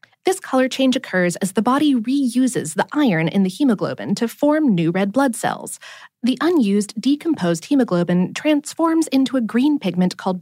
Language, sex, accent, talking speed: English, female, American, 165 wpm